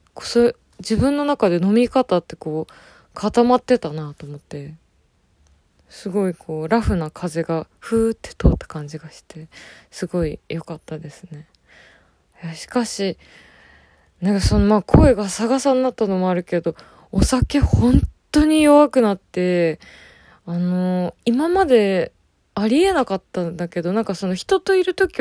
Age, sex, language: 20-39, female, Japanese